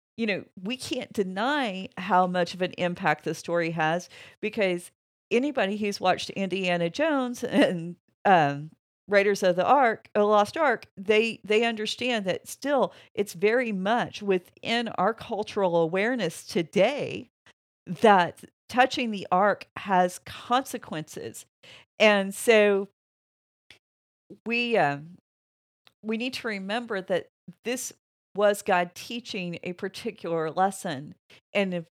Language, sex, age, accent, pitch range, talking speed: English, female, 50-69, American, 165-210 Hz, 120 wpm